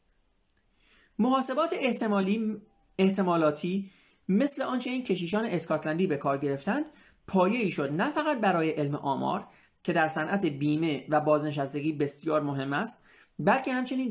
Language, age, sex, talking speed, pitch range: Persian, 30-49, male, 125 wpm, 145-205 Hz